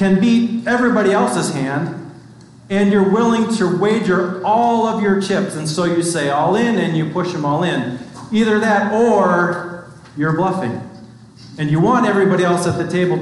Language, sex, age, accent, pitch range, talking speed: English, male, 40-59, American, 150-195 Hz, 175 wpm